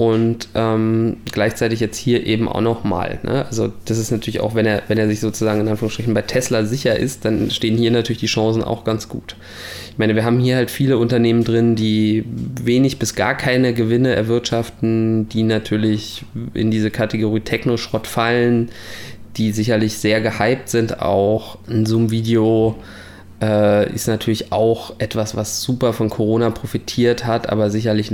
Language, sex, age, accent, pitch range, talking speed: German, male, 20-39, German, 105-115 Hz, 160 wpm